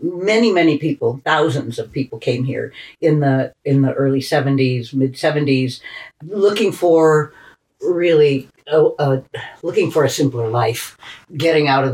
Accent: American